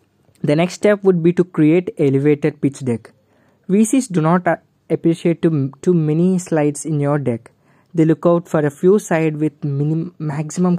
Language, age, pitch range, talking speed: English, 20-39, 135-170 Hz, 170 wpm